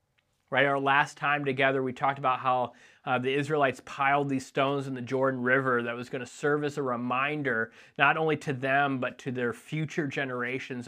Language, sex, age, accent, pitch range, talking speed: English, male, 30-49, American, 120-140 Hz, 200 wpm